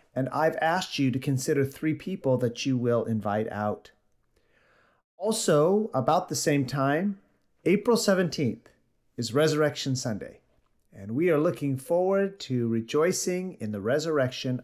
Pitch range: 125-175 Hz